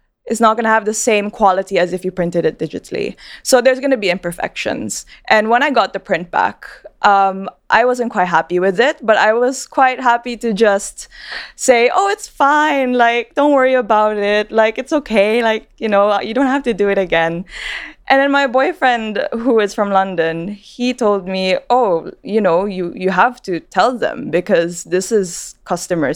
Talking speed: 200 wpm